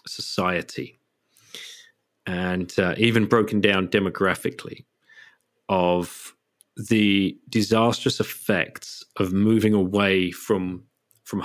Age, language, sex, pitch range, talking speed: 40-59, English, male, 95-115 Hz, 85 wpm